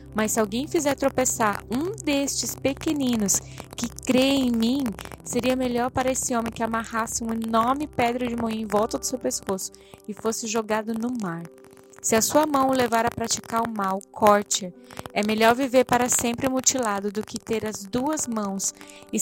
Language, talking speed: Portuguese, 180 wpm